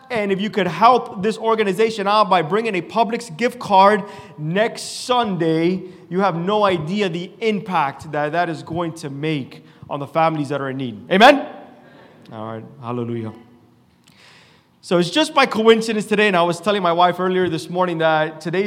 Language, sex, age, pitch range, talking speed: English, male, 30-49, 175-230 Hz, 180 wpm